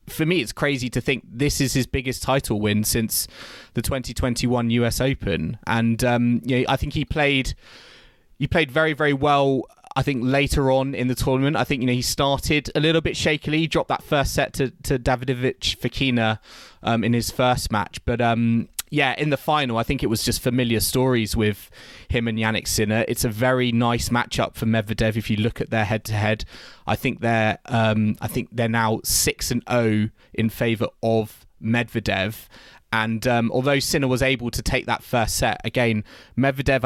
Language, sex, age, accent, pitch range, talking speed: English, male, 20-39, British, 110-135 Hz, 195 wpm